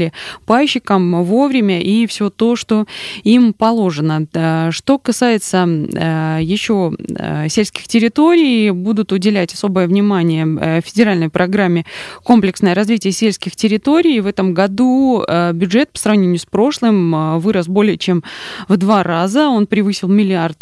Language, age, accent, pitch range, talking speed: Russian, 20-39, native, 175-220 Hz, 115 wpm